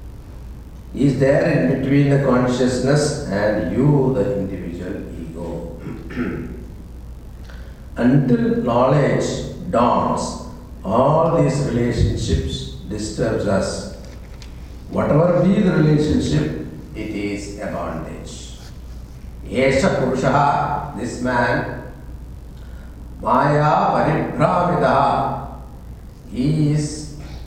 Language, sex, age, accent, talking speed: English, male, 60-79, Indian, 75 wpm